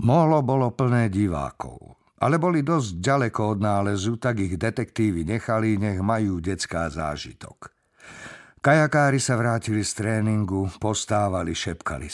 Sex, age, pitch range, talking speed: male, 50-69, 95-120 Hz, 125 wpm